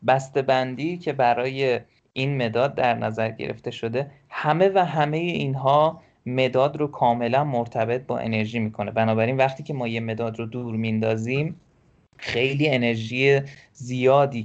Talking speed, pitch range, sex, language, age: 135 wpm, 110-145 Hz, male, Persian, 20-39